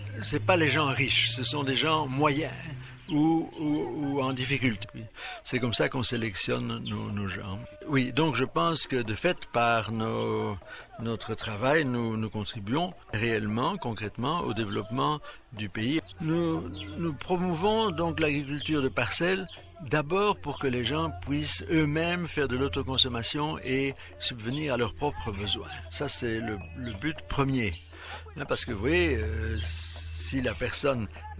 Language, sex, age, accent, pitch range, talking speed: French, male, 60-79, French, 105-150 Hz, 155 wpm